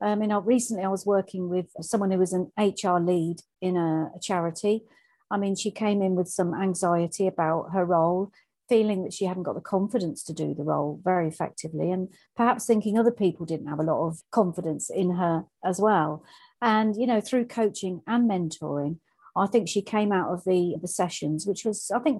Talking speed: 205 wpm